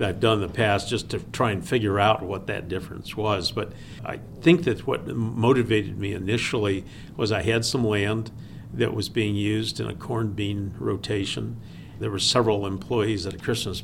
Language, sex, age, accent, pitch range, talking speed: English, male, 50-69, American, 95-110 Hz, 190 wpm